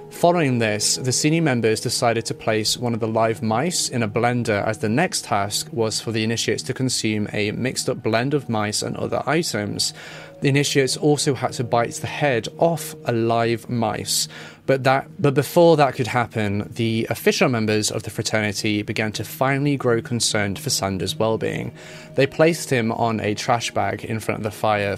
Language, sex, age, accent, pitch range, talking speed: English, male, 30-49, British, 110-145 Hz, 190 wpm